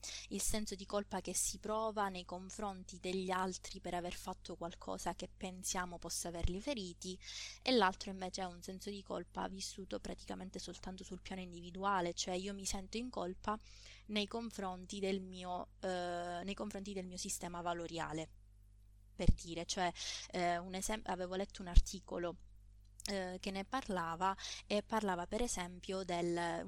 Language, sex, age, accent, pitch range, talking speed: Italian, female, 20-39, native, 175-195 Hz, 155 wpm